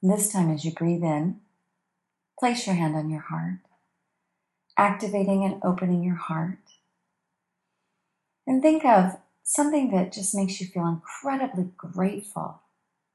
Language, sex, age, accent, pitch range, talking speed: English, female, 40-59, American, 165-195 Hz, 130 wpm